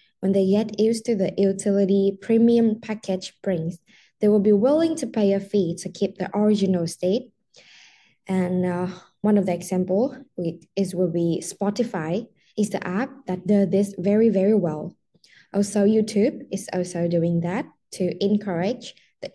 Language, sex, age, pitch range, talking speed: English, female, 10-29, 185-220 Hz, 160 wpm